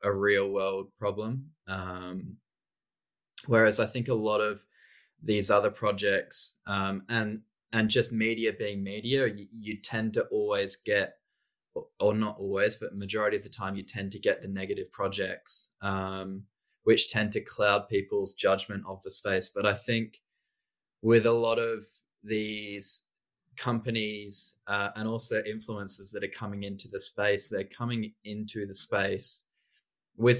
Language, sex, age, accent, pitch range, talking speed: English, male, 20-39, Australian, 100-115 Hz, 150 wpm